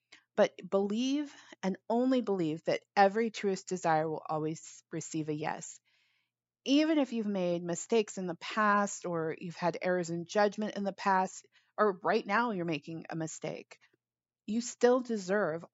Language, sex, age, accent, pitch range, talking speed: English, female, 30-49, American, 170-205 Hz, 155 wpm